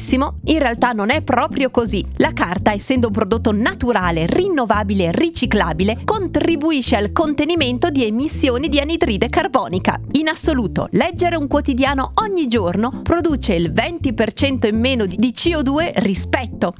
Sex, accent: female, native